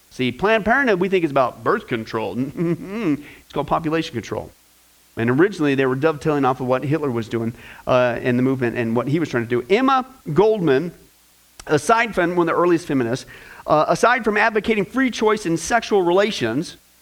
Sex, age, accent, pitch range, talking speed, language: male, 40-59, American, 135-215 Hz, 185 wpm, English